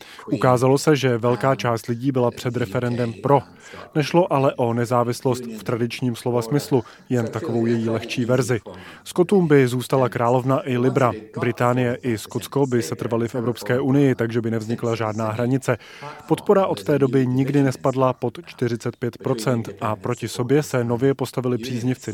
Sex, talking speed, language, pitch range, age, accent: male, 155 wpm, Czech, 120-135 Hz, 30-49, native